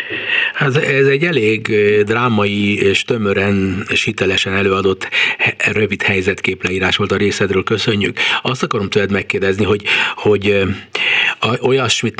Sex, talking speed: male, 115 wpm